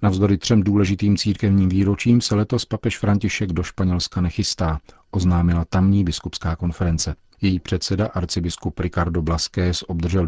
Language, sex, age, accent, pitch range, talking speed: Czech, male, 40-59, native, 85-100 Hz, 130 wpm